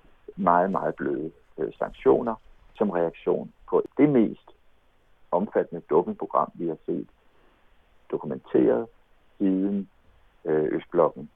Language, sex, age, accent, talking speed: Danish, male, 60-79, native, 90 wpm